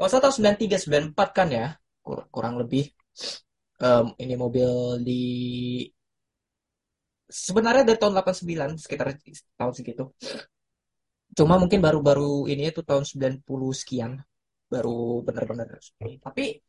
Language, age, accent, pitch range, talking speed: Indonesian, 20-39, native, 135-180 Hz, 105 wpm